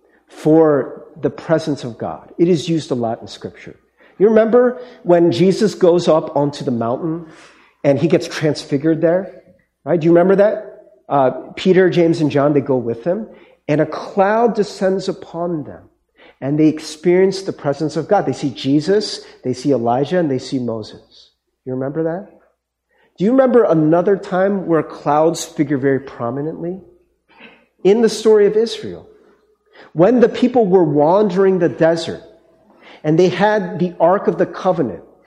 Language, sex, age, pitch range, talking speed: English, male, 40-59, 150-205 Hz, 165 wpm